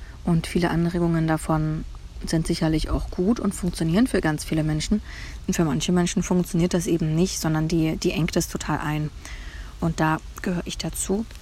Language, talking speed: German, 180 wpm